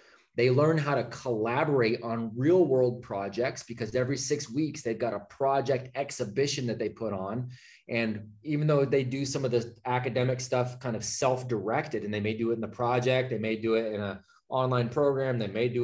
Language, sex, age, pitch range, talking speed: English, male, 20-39, 110-130 Hz, 200 wpm